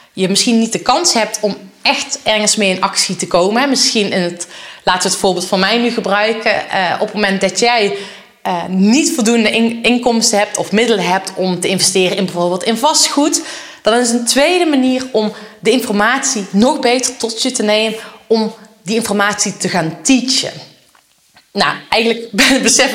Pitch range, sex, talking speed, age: 195-250 Hz, female, 180 wpm, 20-39